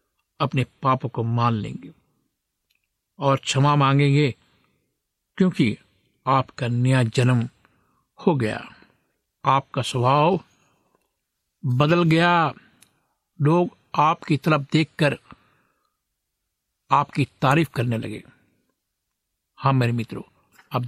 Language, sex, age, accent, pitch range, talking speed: Hindi, male, 60-79, native, 125-155 Hz, 85 wpm